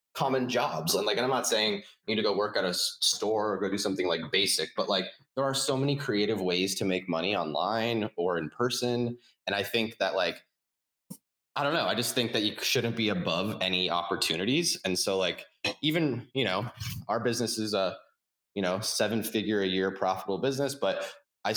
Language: English